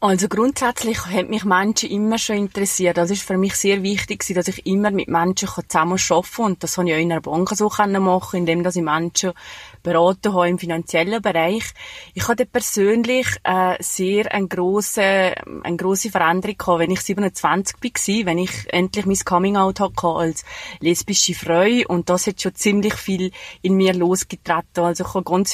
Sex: female